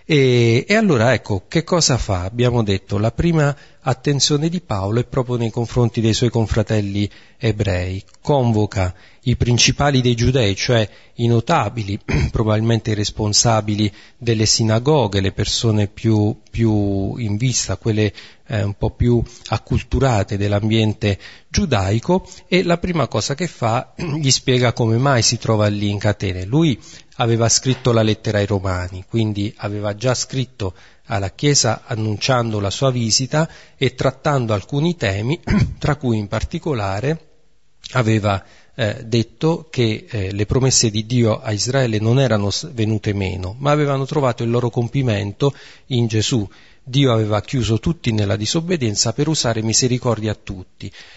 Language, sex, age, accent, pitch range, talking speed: Italian, male, 40-59, native, 105-130 Hz, 145 wpm